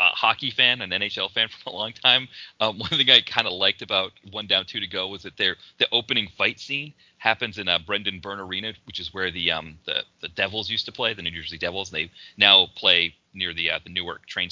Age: 30-49